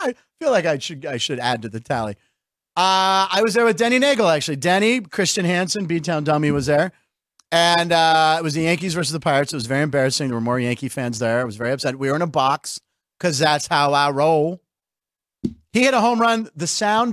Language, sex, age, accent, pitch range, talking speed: English, male, 40-59, American, 145-220 Hz, 230 wpm